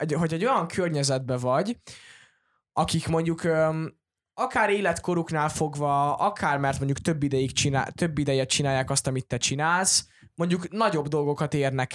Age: 20-39